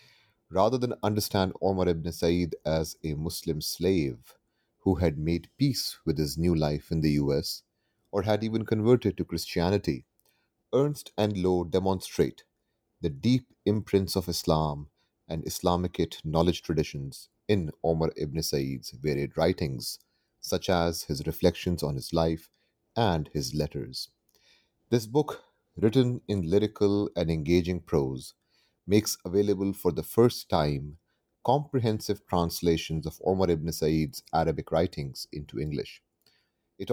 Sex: male